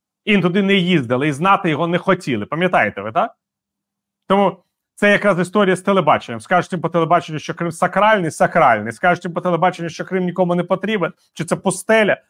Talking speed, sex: 185 wpm, male